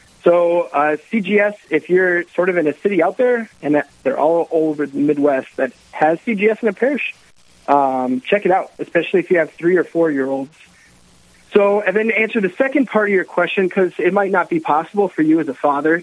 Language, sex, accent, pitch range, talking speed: English, male, American, 140-185 Hz, 215 wpm